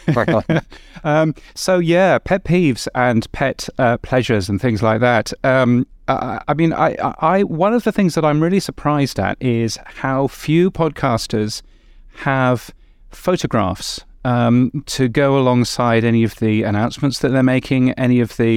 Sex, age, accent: male, 30-49, British